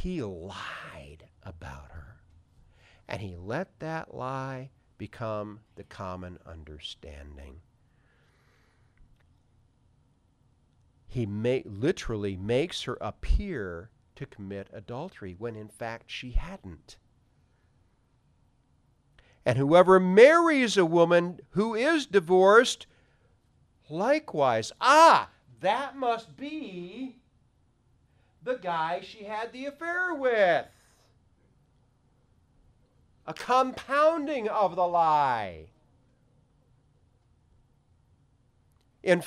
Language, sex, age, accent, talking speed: English, male, 50-69, American, 80 wpm